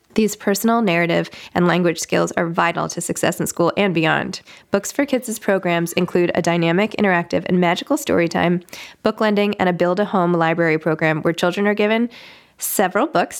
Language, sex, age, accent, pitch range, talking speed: English, female, 20-39, American, 170-225 Hz, 175 wpm